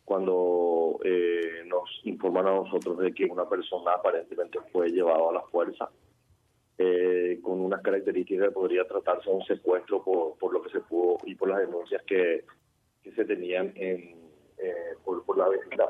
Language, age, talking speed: Spanish, 30-49, 175 wpm